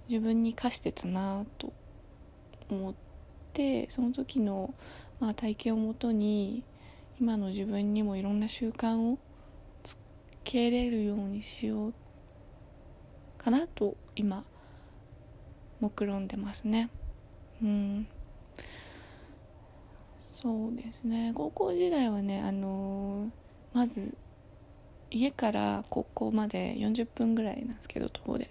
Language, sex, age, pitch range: Japanese, female, 20-39, 200-235 Hz